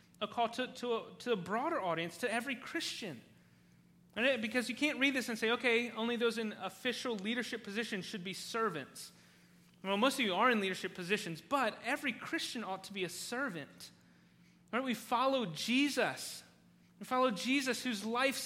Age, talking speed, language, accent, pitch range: 30-49, 180 wpm, English, American, 205-255 Hz